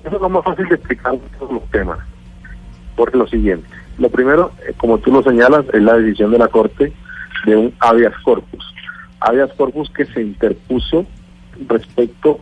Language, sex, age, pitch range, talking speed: Spanish, male, 50-69, 105-145 Hz, 165 wpm